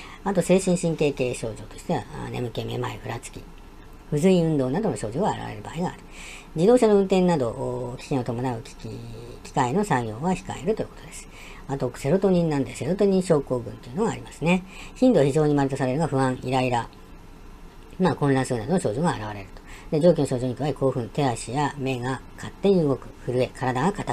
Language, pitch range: Japanese, 115-165 Hz